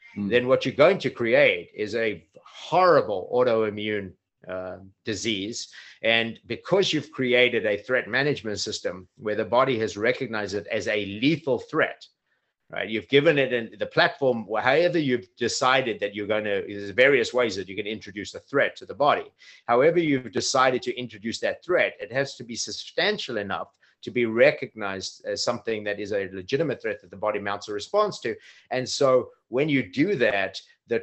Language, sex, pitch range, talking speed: English, male, 105-150 Hz, 180 wpm